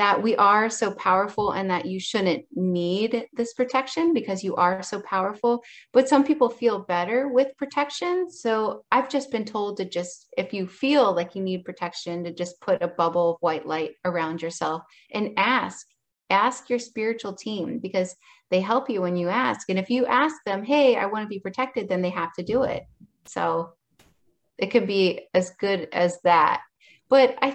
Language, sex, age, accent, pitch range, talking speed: English, female, 30-49, American, 180-230 Hz, 190 wpm